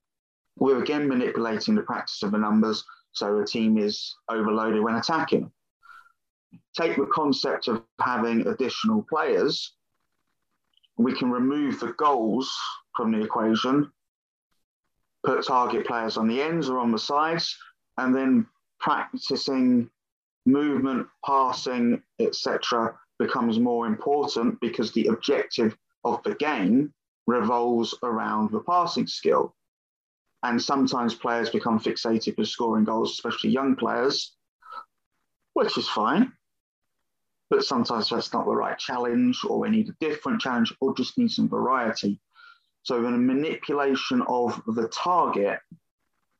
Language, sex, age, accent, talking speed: English, male, 30-49, British, 125 wpm